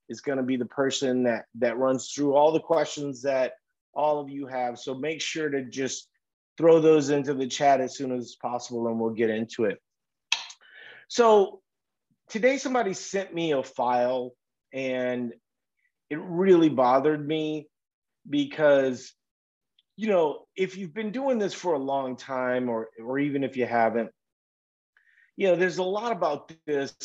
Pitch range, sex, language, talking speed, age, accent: 120-155 Hz, male, English, 165 wpm, 30-49, American